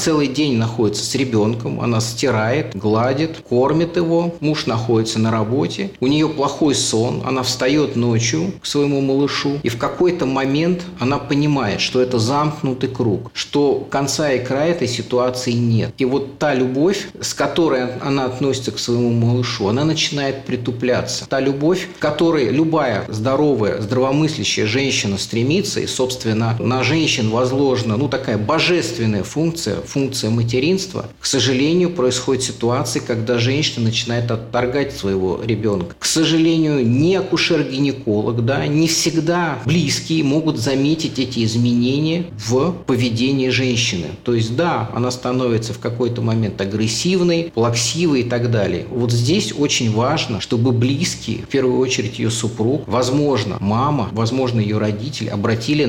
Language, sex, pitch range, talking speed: Russian, male, 115-145 Hz, 140 wpm